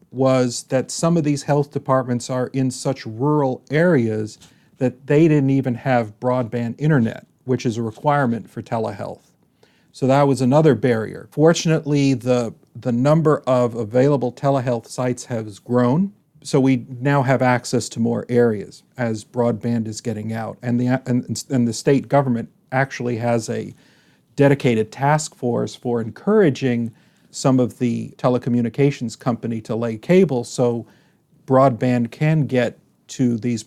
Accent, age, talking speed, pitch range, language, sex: American, 50-69, 145 wpm, 120-145 Hz, English, male